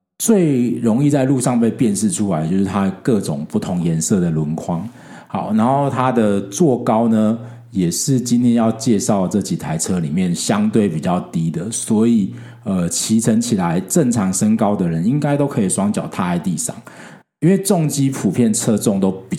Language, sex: Chinese, male